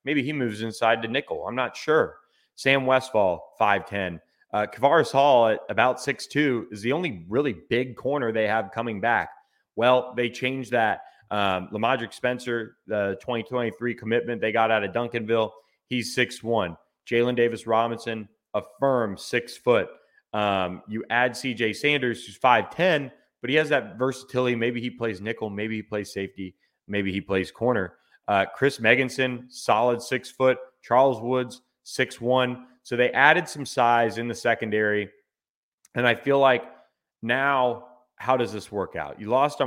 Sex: male